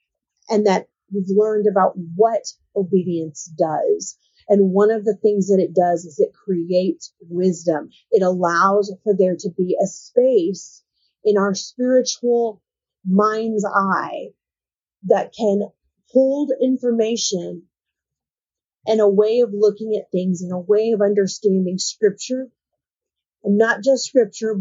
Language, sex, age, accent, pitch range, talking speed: English, female, 30-49, American, 190-230 Hz, 135 wpm